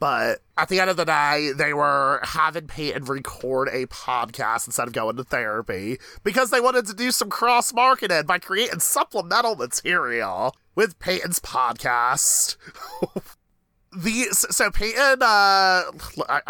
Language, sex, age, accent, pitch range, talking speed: English, male, 30-49, American, 140-190 Hz, 135 wpm